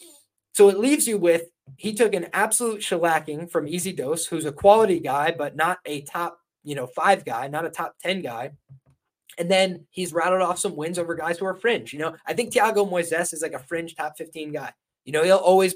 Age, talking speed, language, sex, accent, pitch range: 20-39, 225 wpm, English, male, American, 150-185 Hz